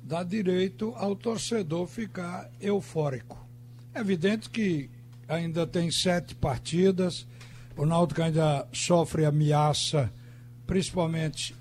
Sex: male